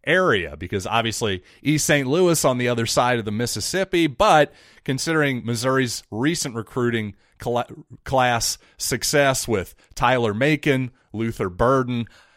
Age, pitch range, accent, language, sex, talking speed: 30-49, 105-145 Hz, American, English, male, 120 wpm